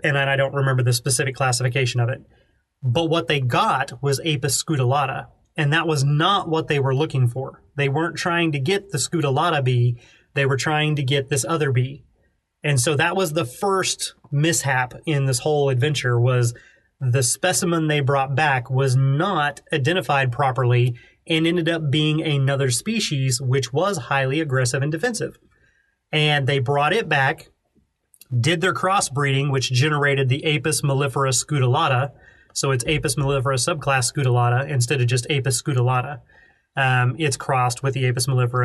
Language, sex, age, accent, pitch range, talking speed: English, male, 30-49, American, 130-160 Hz, 165 wpm